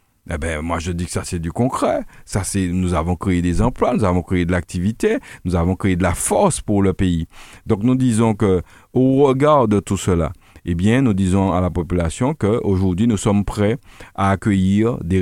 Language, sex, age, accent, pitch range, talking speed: French, male, 50-69, French, 90-120 Hz, 215 wpm